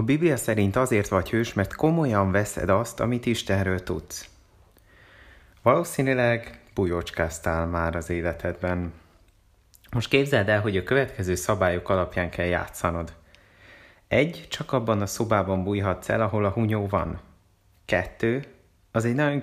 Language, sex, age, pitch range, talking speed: Hungarian, male, 30-49, 90-115 Hz, 135 wpm